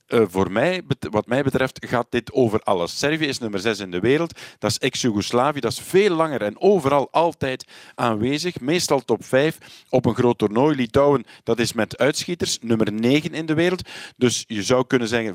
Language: Dutch